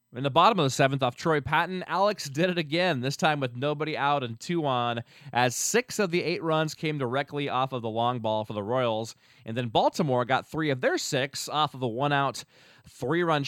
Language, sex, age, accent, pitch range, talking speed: English, male, 20-39, American, 125-160 Hz, 225 wpm